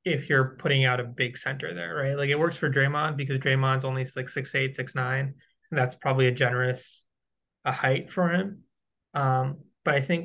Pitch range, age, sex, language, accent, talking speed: 130-155 Hz, 20-39, male, English, American, 195 wpm